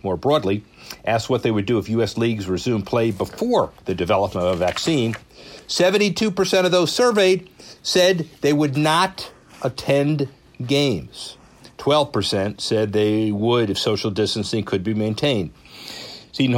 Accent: American